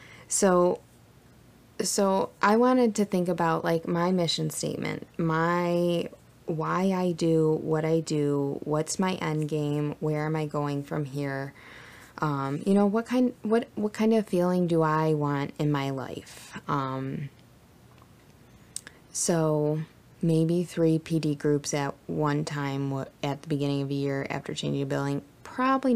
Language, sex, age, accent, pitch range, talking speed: English, female, 20-39, American, 140-175 Hz, 145 wpm